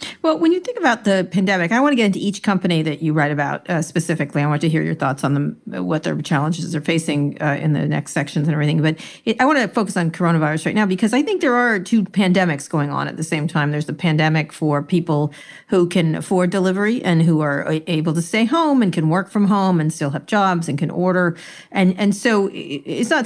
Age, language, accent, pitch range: 50-69, English, American, 155-195 Hz